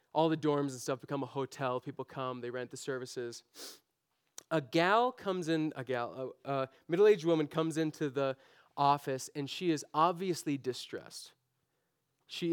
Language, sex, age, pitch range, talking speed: English, male, 30-49, 130-160 Hz, 165 wpm